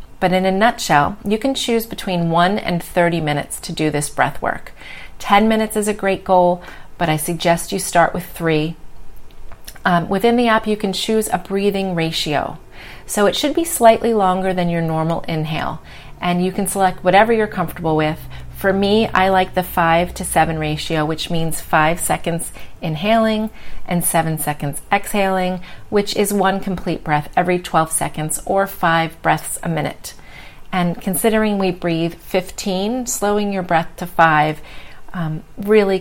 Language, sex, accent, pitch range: English, female, American, 165-205 Hz